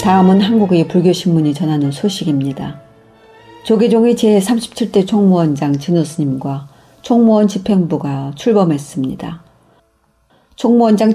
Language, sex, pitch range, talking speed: English, female, 145-195 Hz, 70 wpm